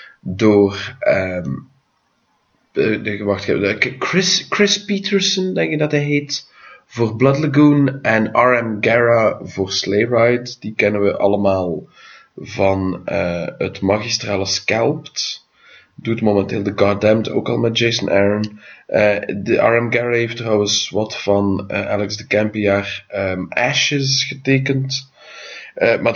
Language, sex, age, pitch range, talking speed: English, male, 30-49, 100-125 Hz, 130 wpm